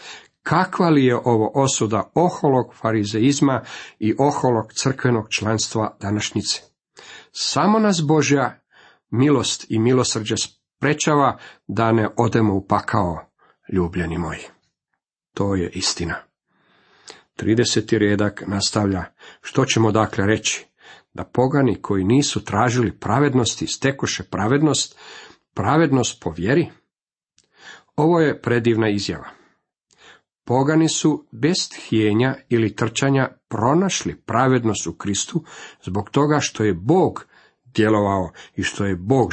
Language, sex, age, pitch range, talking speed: Croatian, male, 50-69, 105-140 Hz, 110 wpm